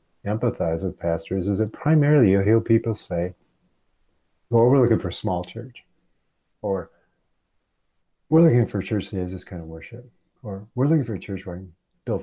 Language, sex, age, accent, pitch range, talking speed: English, male, 50-69, American, 85-110 Hz, 185 wpm